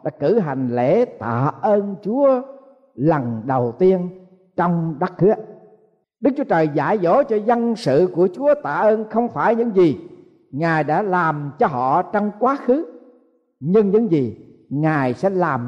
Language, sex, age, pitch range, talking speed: Vietnamese, male, 60-79, 155-225 Hz, 160 wpm